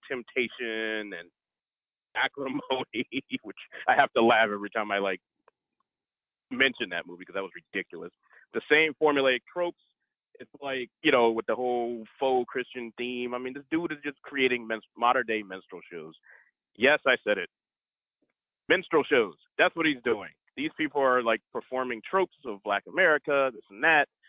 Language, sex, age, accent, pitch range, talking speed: English, male, 30-49, American, 105-125 Hz, 165 wpm